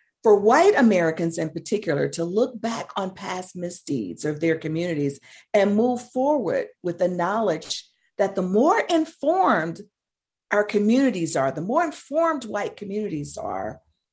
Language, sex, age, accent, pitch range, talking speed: English, female, 50-69, American, 170-245 Hz, 140 wpm